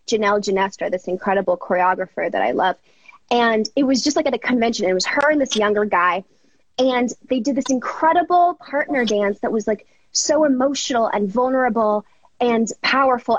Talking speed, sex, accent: 175 wpm, female, American